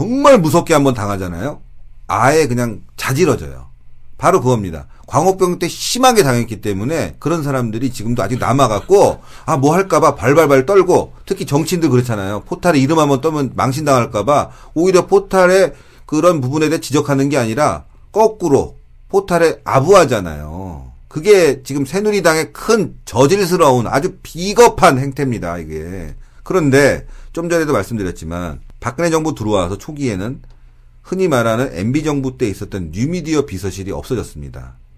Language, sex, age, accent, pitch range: Korean, male, 40-59, native, 95-160 Hz